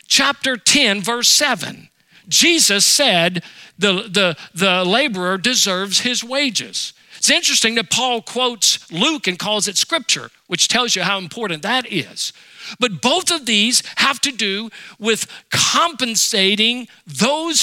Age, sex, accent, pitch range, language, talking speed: 50-69, male, American, 200-260 Hz, English, 135 wpm